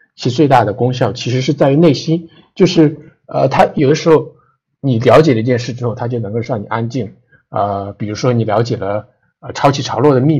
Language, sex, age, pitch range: Chinese, male, 50-69, 105-135 Hz